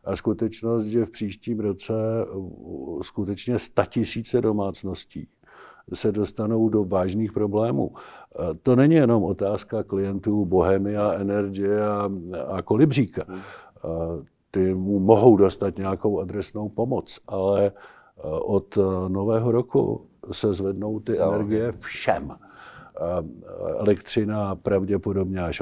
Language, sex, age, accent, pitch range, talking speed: Czech, male, 50-69, native, 95-110 Hz, 105 wpm